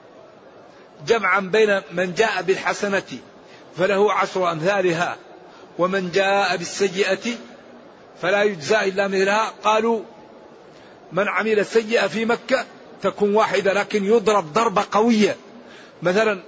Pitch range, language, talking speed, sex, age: 175-220 Hz, Arabic, 100 wpm, male, 50-69